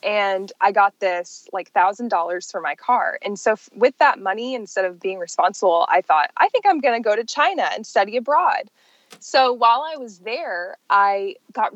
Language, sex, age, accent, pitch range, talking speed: English, female, 20-39, American, 190-255 Hz, 195 wpm